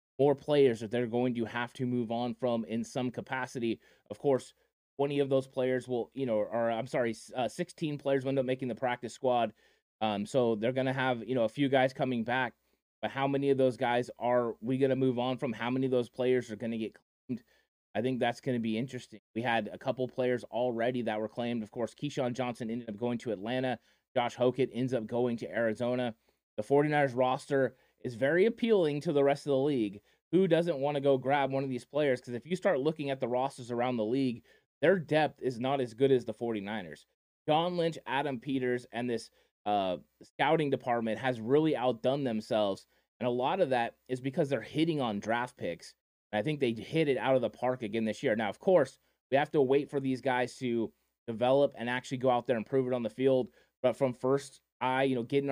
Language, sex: English, male